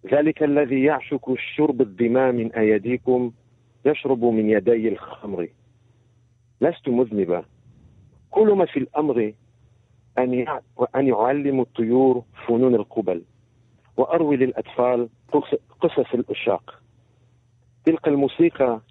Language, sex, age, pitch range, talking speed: Hebrew, male, 50-69, 115-135 Hz, 85 wpm